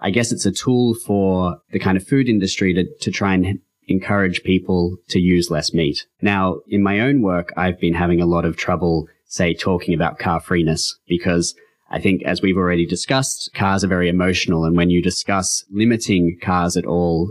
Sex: male